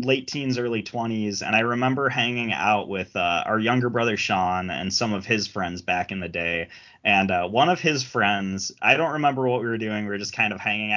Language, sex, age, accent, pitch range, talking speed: English, male, 20-39, American, 105-130 Hz, 235 wpm